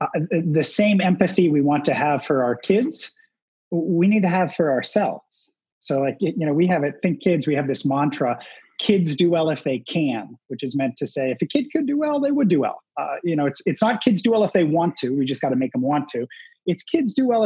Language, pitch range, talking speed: English, 155-220 Hz, 260 wpm